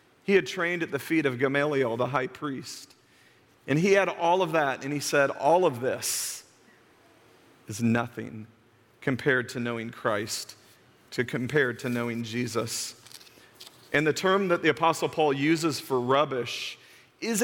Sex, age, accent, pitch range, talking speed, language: male, 40-59, American, 140-180 Hz, 155 wpm, English